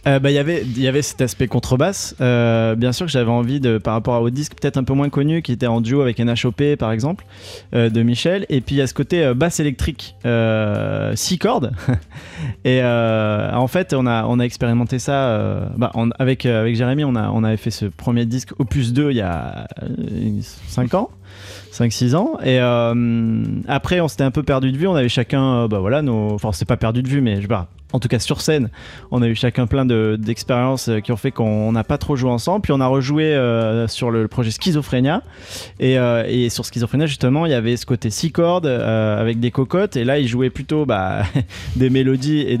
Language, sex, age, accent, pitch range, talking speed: French, male, 30-49, French, 115-140 Hz, 235 wpm